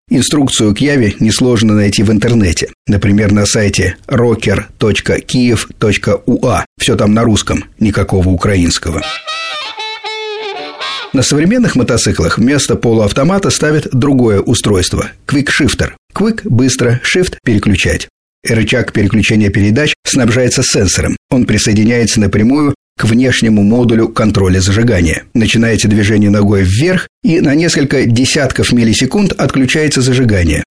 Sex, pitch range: male, 100-130 Hz